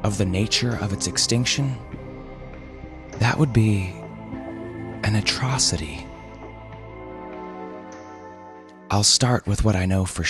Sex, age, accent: male, 20-39, American